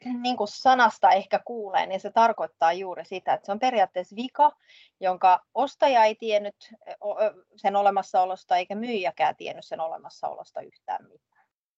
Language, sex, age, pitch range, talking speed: Finnish, female, 30-49, 175-235 Hz, 145 wpm